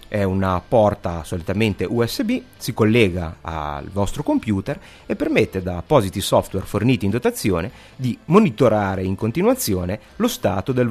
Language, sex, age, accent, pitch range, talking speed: Italian, male, 30-49, native, 95-120 Hz, 140 wpm